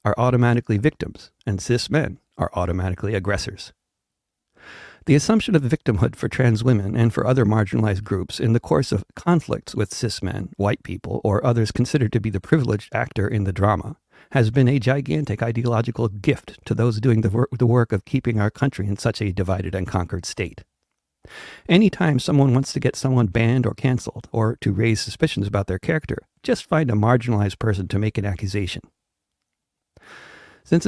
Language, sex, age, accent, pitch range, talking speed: English, male, 60-79, American, 100-125 Hz, 175 wpm